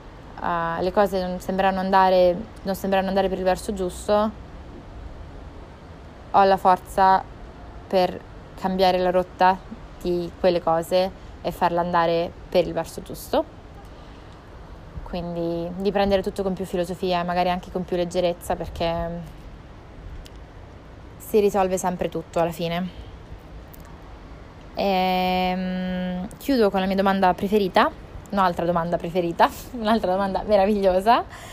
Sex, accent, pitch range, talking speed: female, native, 165-195 Hz, 110 wpm